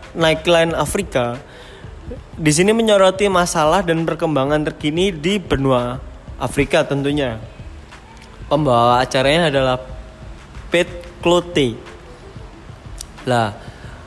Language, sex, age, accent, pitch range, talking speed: Indonesian, male, 20-39, native, 125-170 Hz, 80 wpm